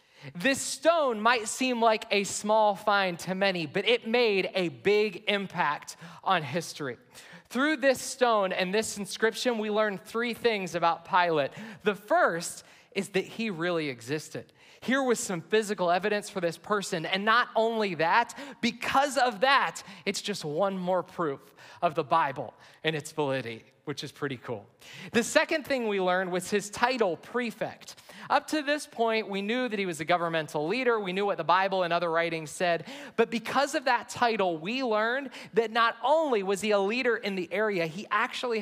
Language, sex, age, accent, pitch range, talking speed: English, male, 30-49, American, 170-235 Hz, 180 wpm